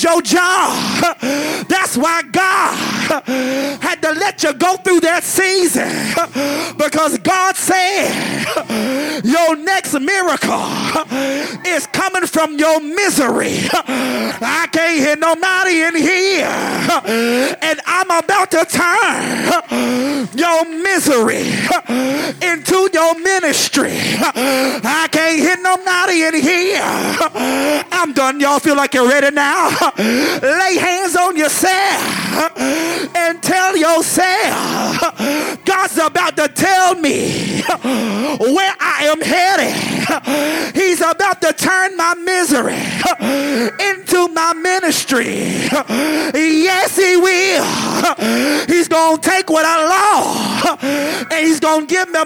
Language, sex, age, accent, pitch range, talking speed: English, male, 30-49, American, 290-365 Hz, 110 wpm